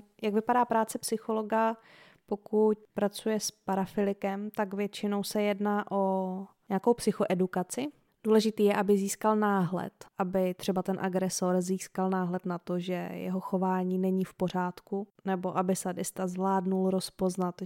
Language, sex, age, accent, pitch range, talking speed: Czech, female, 20-39, native, 185-205 Hz, 135 wpm